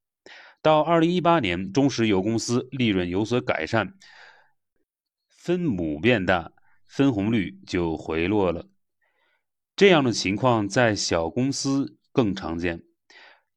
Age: 30-49